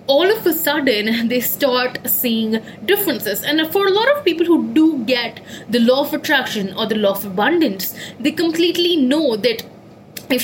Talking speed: 180 wpm